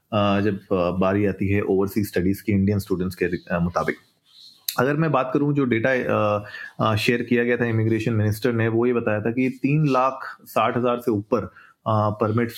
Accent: native